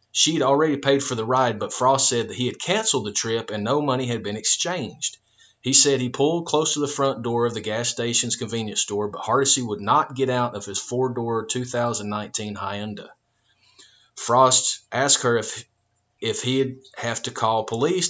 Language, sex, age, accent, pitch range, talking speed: English, male, 30-49, American, 115-135 Hz, 190 wpm